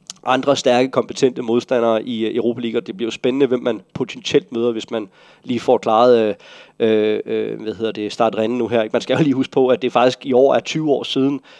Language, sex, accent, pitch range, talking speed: Danish, male, native, 110-130 Hz, 230 wpm